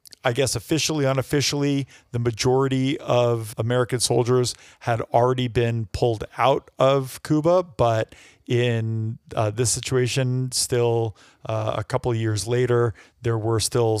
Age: 40-59